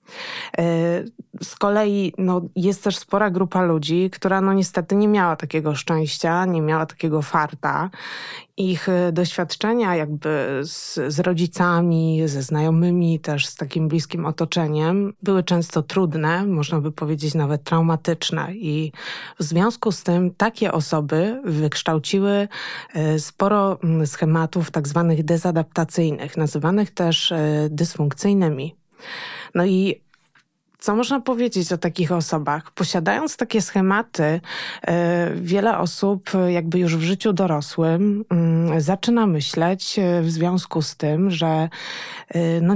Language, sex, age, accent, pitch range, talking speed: Polish, female, 20-39, native, 160-190 Hz, 110 wpm